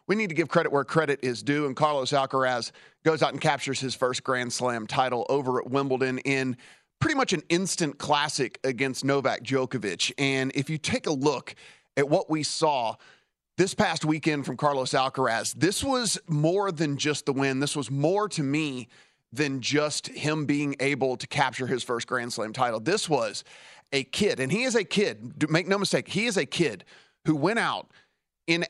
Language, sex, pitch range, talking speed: English, male, 130-165 Hz, 195 wpm